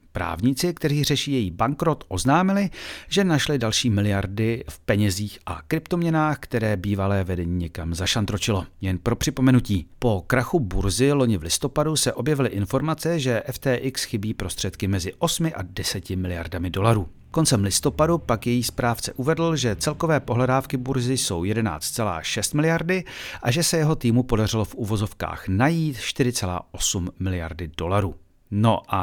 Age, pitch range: 40-59, 95-140 Hz